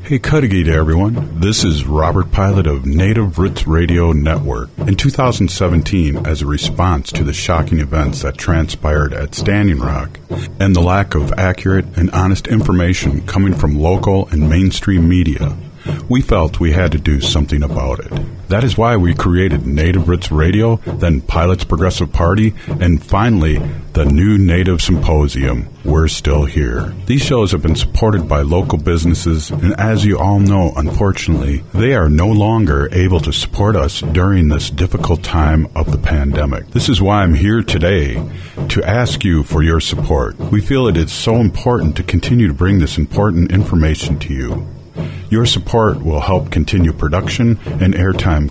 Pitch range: 80-100 Hz